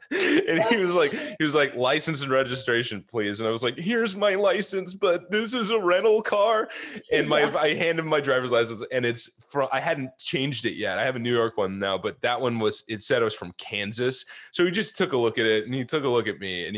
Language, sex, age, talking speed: English, male, 20-39, 260 wpm